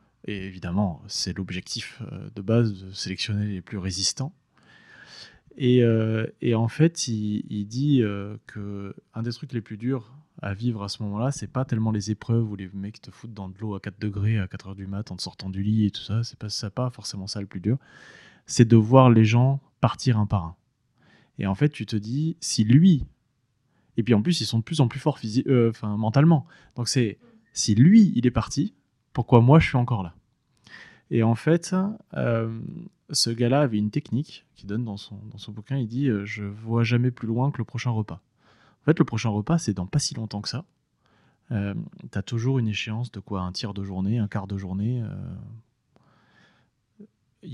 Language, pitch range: French, 105-130 Hz